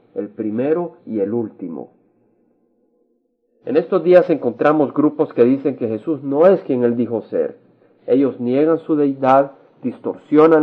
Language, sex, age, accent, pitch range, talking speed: Spanish, male, 50-69, Mexican, 125-160 Hz, 140 wpm